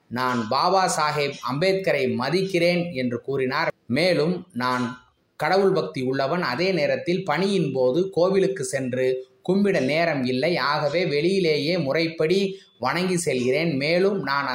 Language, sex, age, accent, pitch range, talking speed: Tamil, male, 20-39, native, 130-175 Hz, 115 wpm